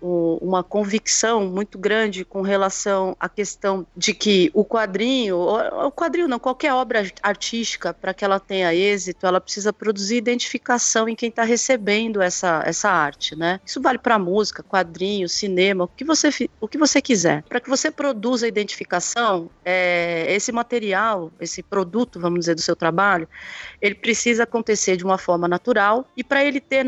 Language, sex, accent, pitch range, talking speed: Portuguese, female, Brazilian, 185-245 Hz, 165 wpm